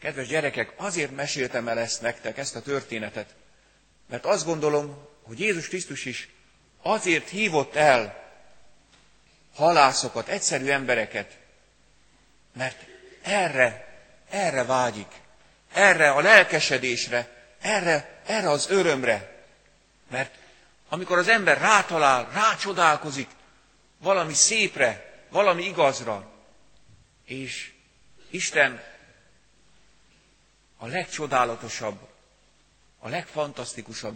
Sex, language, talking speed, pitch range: male, Hungarian, 90 wpm, 120-170 Hz